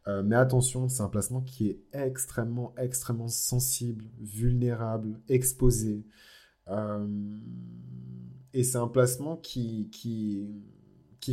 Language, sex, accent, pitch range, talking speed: French, male, French, 95-125 Hz, 110 wpm